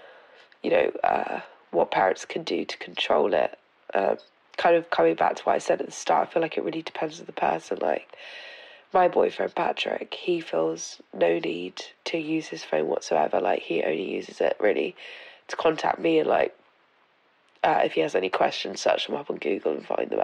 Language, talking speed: English, 205 wpm